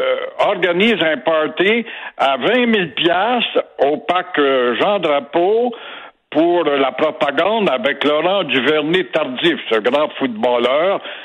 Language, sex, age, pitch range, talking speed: French, male, 60-79, 145-210 Hz, 110 wpm